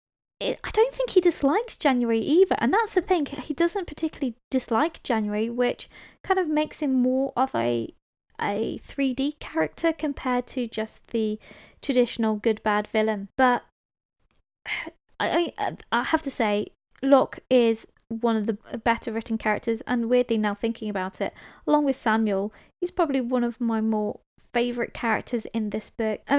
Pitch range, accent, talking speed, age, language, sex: 230-280 Hz, British, 155 wpm, 20-39, English, female